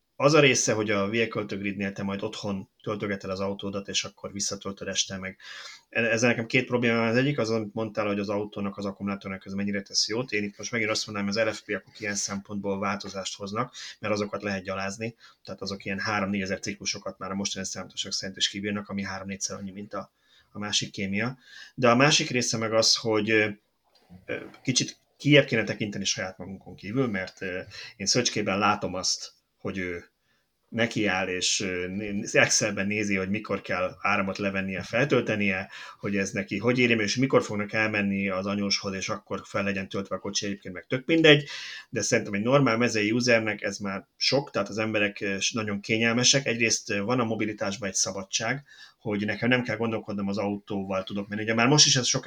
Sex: male